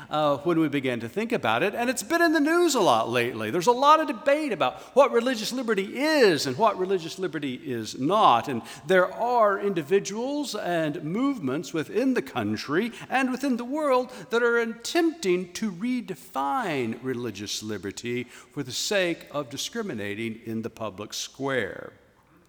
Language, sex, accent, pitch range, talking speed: English, male, American, 145-230 Hz, 165 wpm